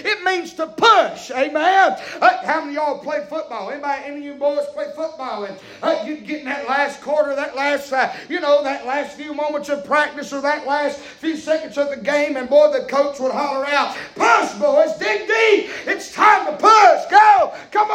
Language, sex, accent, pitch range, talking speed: English, male, American, 280-325 Hz, 215 wpm